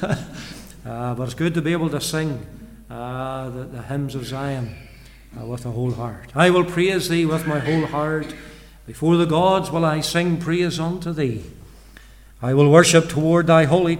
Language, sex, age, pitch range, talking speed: English, male, 60-79, 140-170 Hz, 185 wpm